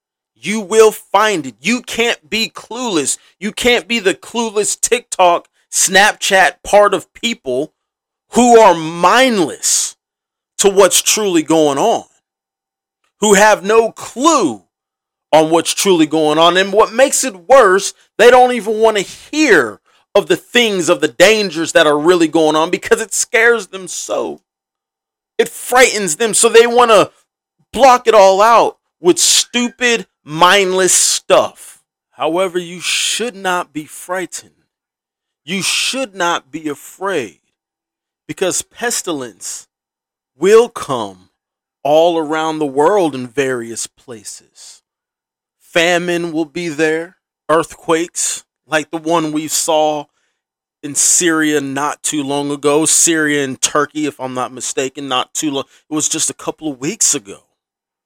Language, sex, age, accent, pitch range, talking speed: English, male, 30-49, American, 155-235 Hz, 135 wpm